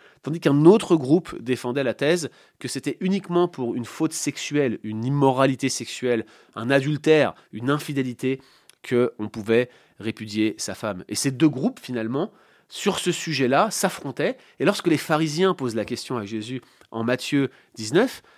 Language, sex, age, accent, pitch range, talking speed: French, male, 30-49, French, 115-155 Hz, 155 wpm